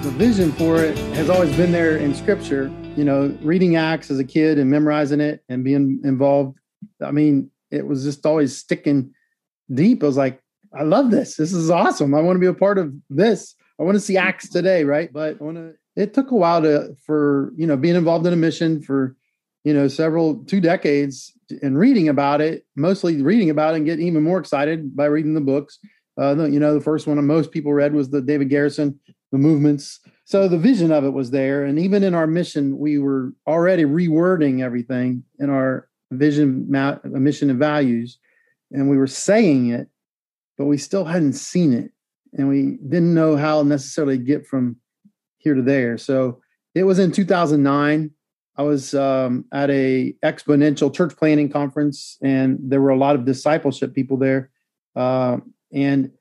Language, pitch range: English, 140-170 Hz